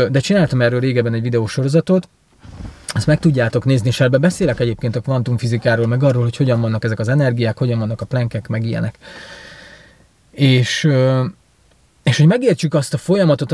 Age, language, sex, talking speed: 30-49, Hungarian, male, 160 wpm